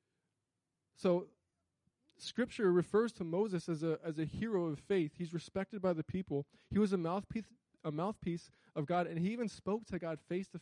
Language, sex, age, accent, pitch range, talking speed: English, male, 20-39, American, 155-195 Hz, 185 wpm